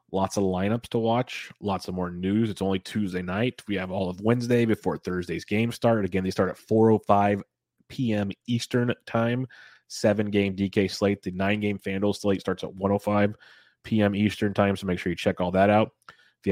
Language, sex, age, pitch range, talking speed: English, male, 30-49, 95-105 Hz, 200 wpm